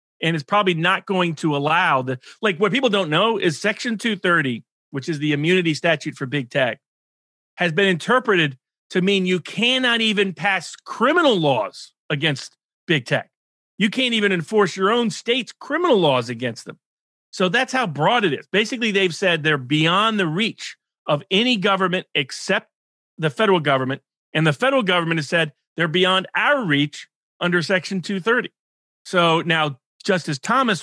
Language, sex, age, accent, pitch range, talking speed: English, male, 40-59, American, 145-190 Hz, 165 wpm